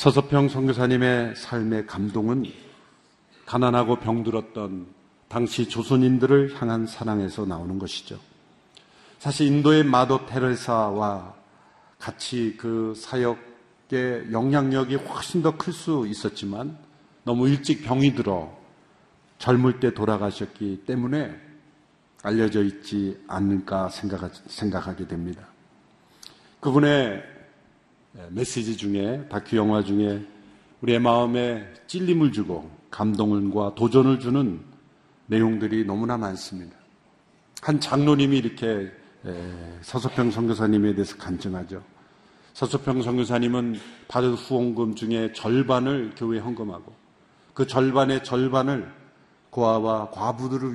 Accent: native